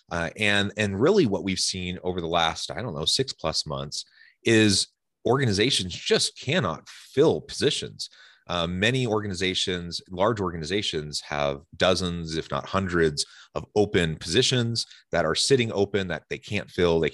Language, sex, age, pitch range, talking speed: English, male, 30-49, 80-100 Hz, 155 wpm